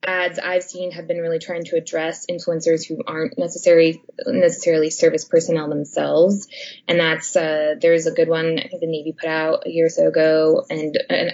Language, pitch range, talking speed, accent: English, 160-180 Hz, 195 wpm, American